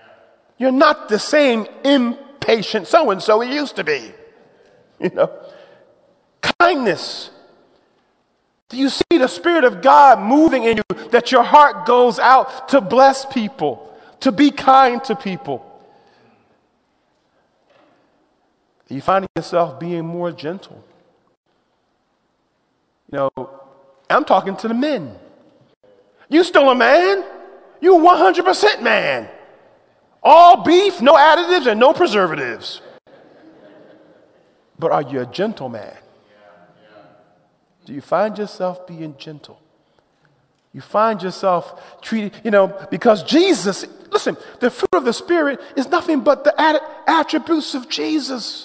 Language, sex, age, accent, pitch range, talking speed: English, male, 40-59, American, 180-300 Hz, 120 wpm